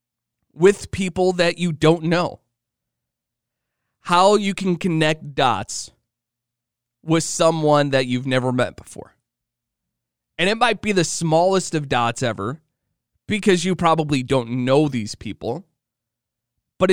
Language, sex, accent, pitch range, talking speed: English, male, American, 120-160 Hz, 125 wpm